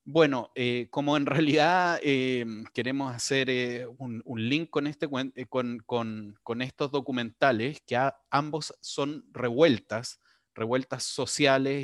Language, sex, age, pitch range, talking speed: Spanish, male, 30-49, 115-140 Hz, 135 wpm